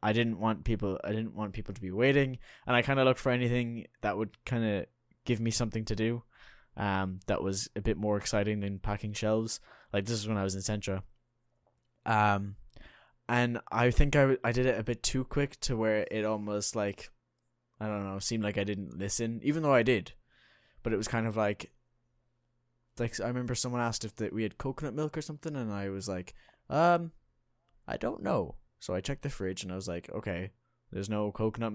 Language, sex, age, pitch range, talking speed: English, male, 10-29, 100-120 Hz, 215 wpm